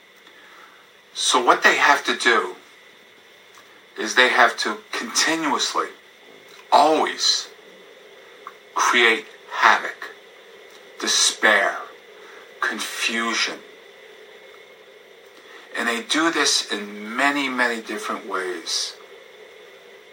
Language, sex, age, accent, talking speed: English, male, 50-69, American, 75 wpm